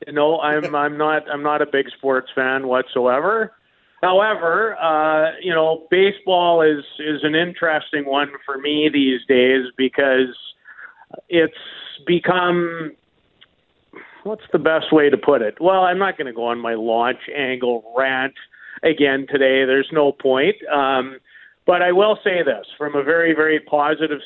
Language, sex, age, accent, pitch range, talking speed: English, male, 50-69, American, 135-160 Hz, 155 wpm